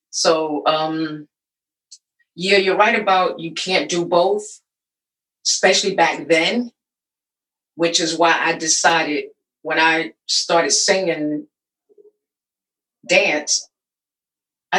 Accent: American